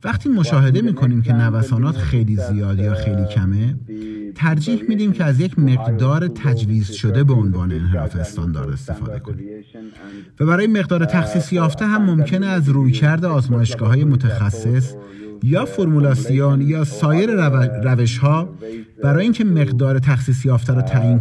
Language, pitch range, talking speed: Persian, 110-155 Hz, 135 wpm